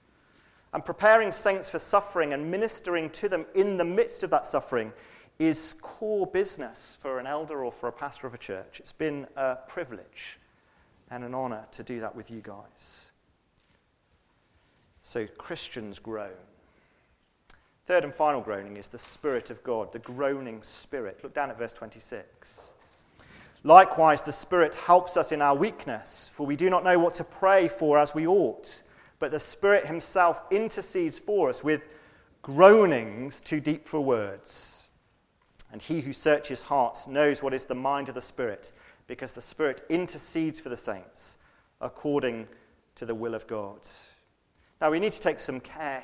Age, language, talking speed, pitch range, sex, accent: 40-59, English, 165 wpm, 130-175 Hz, male, British